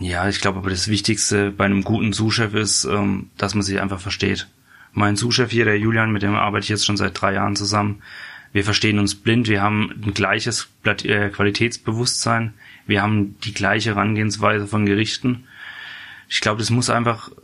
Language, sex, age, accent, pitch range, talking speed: German, male, 20-39, German, 100-110 Hz, 180 wpm